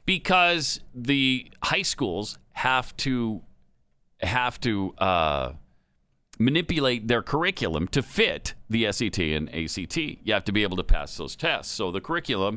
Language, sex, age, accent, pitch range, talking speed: English, male, 40-59, American, 95-145 Hz, 145 wpm